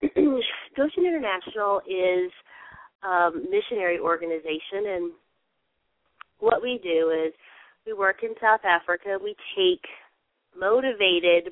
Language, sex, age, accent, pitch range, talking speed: English, female, 30-49, American, 170-215 Hz, 100 wpm